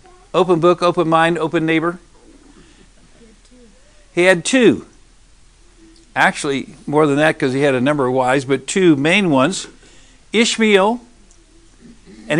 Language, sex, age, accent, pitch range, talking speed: English, male, 60-79, American, 155-205 Hz, 125 wpm